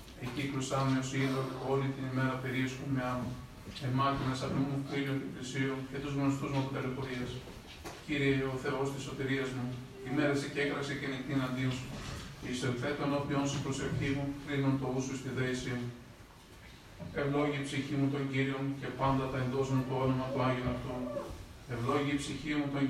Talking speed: 170 wpm